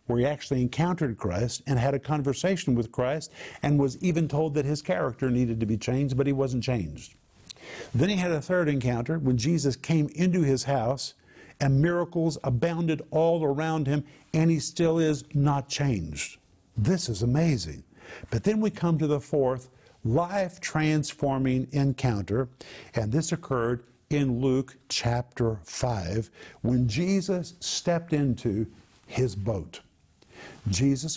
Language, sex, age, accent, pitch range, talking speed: English, male, 50-69, American, 120-155 Hz, 145 wpm